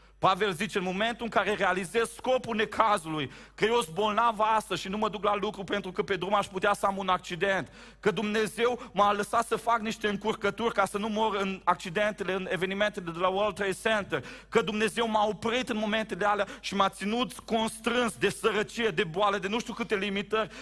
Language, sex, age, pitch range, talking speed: Romanian, male, 40-59, 185-225 Hz, 200 wpm